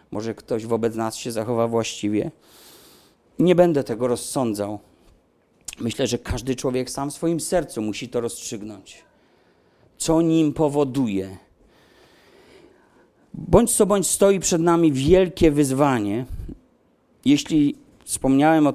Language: Polish